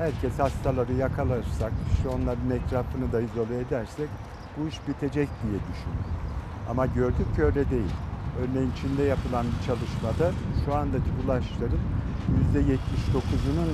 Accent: native